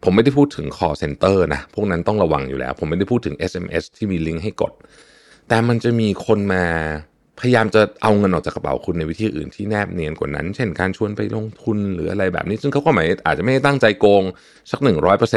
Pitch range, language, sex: 90-125 Hz, Thai, male